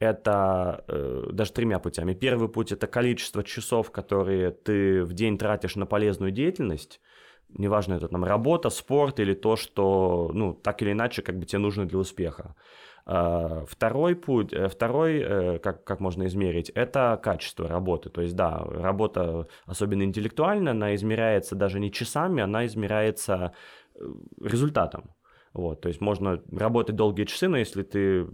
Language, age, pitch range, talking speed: Russian, 20-39, 95-115 Hz, 145 wpm